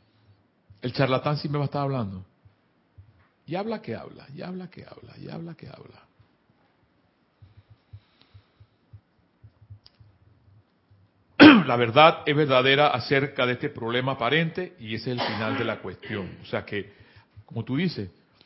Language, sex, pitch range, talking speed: Spanish, male, 100-145 Hz, 140 wpm